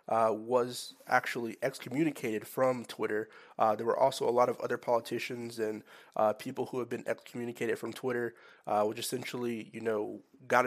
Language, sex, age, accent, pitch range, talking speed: English, male, 20-39, American, 115-125 Hz, 170 wpm